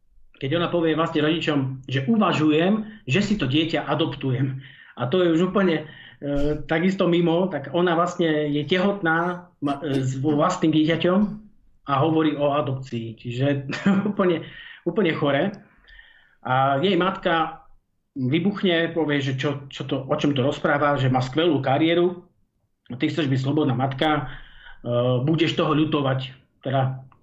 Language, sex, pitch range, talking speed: Slovak, male, 135-170 Hz, 145 wpm